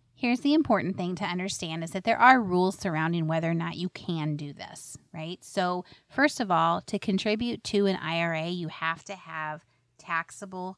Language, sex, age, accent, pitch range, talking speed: English, female, 30-49, American, 155-195 Hz, 190 wpm